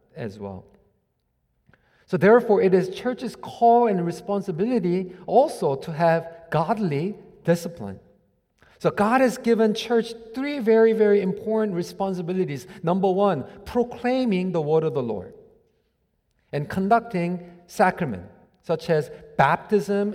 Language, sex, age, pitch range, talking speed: English, male, 40-59, 160-215 Hz, 115 wpm